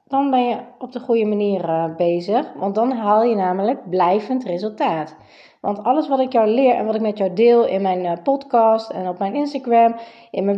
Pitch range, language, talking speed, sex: 195-255 Hz, Dutch, 210 wpm, female